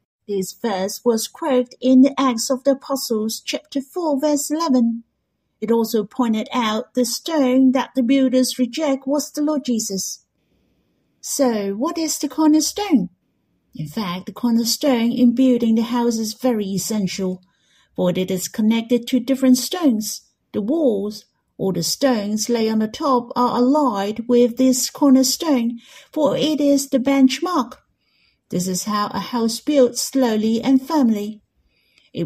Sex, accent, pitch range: female, British, 215-275 Hz